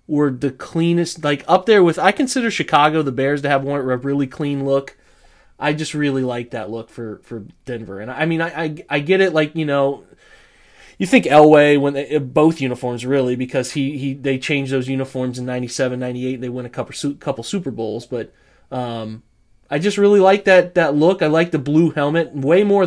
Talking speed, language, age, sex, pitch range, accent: 220 wpm, English, 30-49, male, 125-155 Hz, American